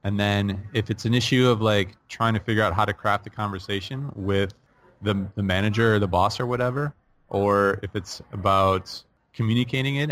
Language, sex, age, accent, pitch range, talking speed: English, male, 30-49, American, 95-115 Hz, 190 wpm